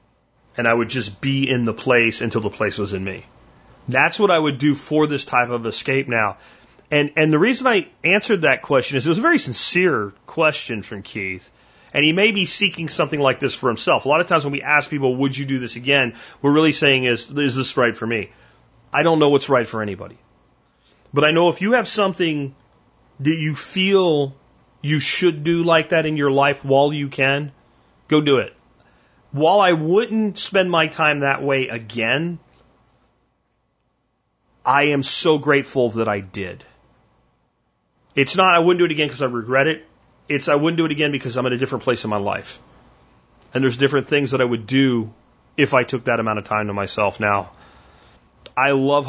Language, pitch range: English, 120-155 Hz